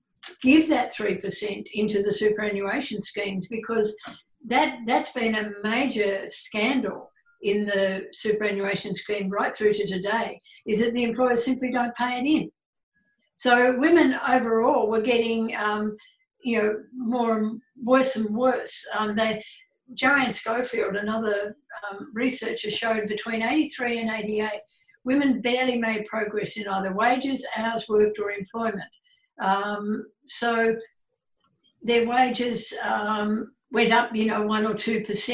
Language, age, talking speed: English, 60-79, 130 wpm